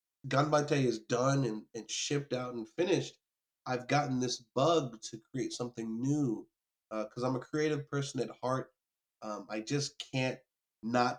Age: 30-49